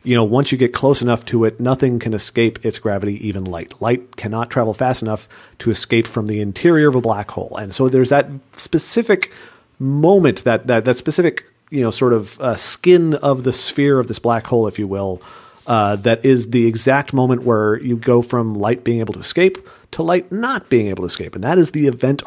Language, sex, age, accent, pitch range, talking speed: English, male, 40-59, American, 105-140 Hz, 225 wpm